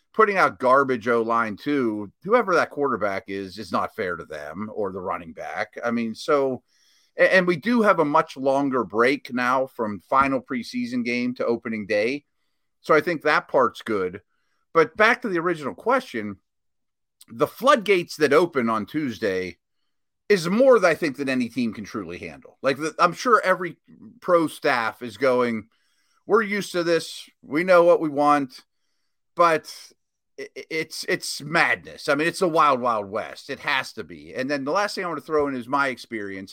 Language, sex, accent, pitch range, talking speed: English, male, American, 120-185 Hz, 185 wpm